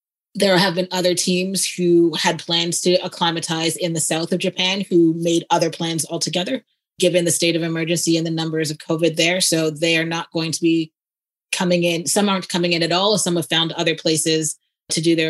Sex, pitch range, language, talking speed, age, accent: female, 160-180 Hz, English, 215 wpm, 30-49, American